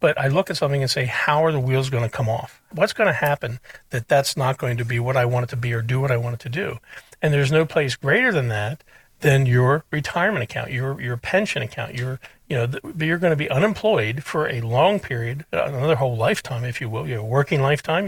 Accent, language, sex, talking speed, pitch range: American, English, male, 250 wpm, 125-160 Hz